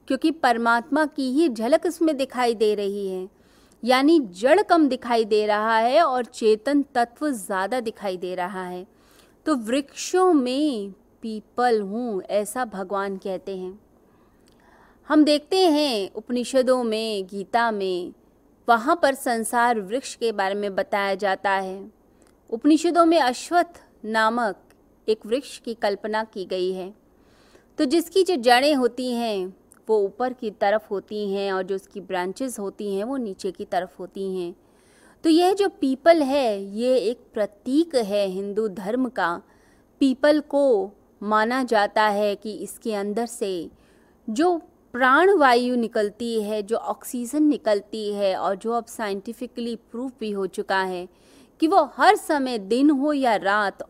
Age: 30-49